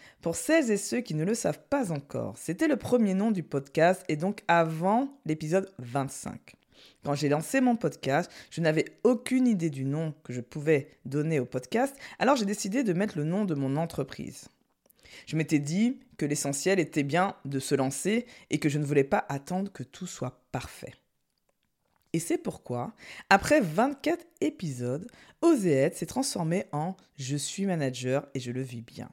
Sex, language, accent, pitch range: female, French, French, 140-220 Hz